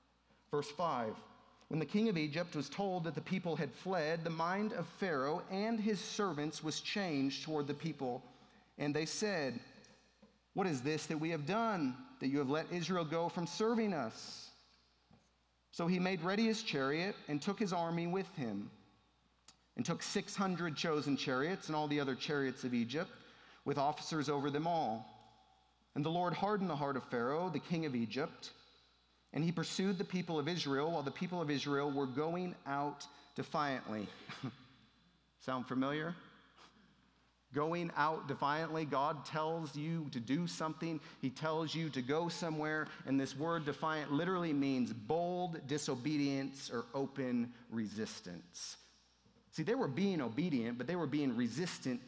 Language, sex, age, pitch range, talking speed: English, male, 40-59, 135-175 Hz, 160 wpm